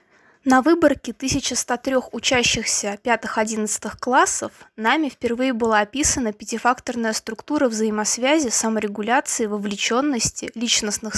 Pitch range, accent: 220-270 Hz, native